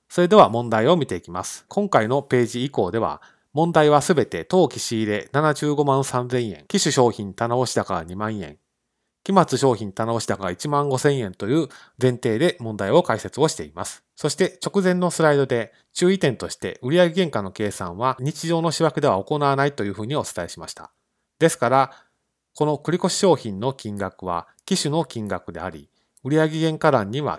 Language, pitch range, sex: Japanese, 110-160 Hz, male